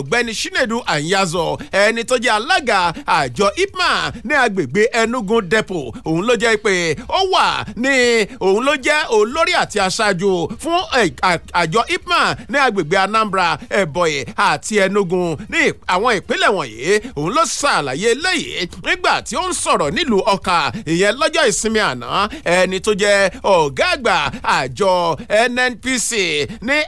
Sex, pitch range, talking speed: male, 195-290 Hz, 155 wpm